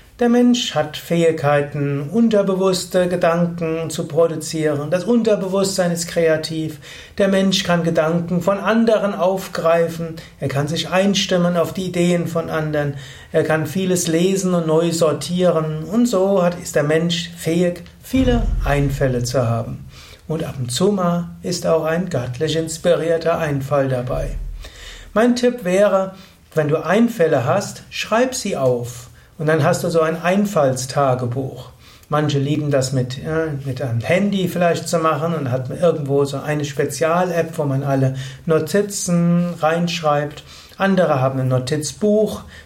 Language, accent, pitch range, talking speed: German, German, 140-185 Hz, 140 wpm